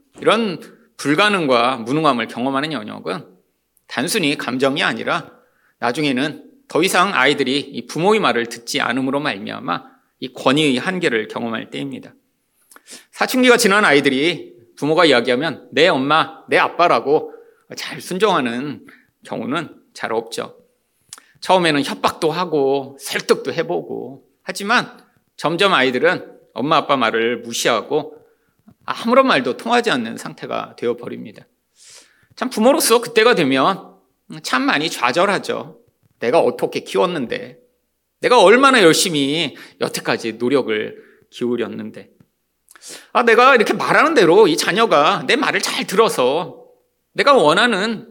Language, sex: Korean, male